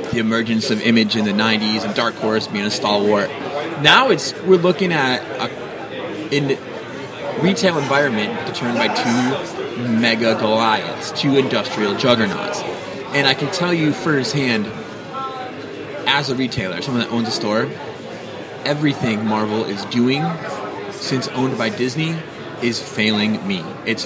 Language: English